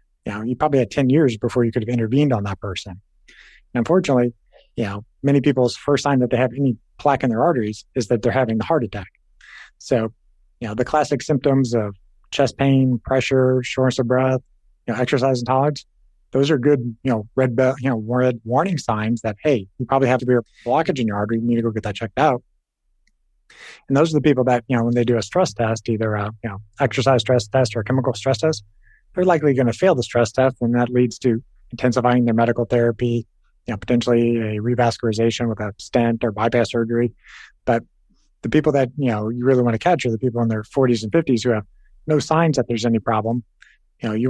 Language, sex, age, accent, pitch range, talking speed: English, male, 30-49, American, 115-135 Hz, 230 wpm